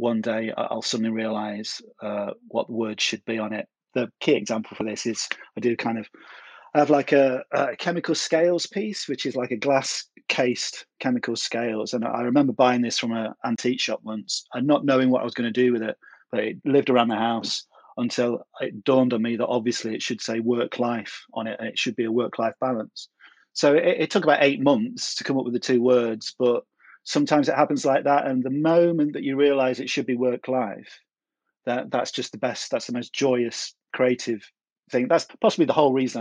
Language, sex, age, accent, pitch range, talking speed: English, male, 30-49, British, 115-140 Hz, 220 wpm